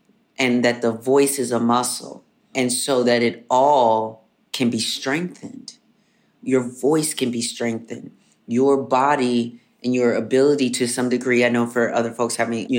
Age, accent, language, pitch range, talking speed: 30-49, American, English, 120-140 Hz, 160 wpm